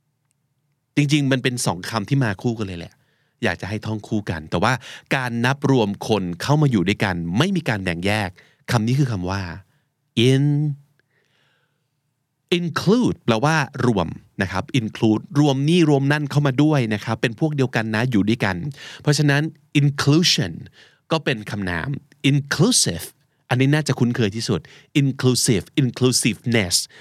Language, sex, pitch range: Thai, male, 110-145 Hz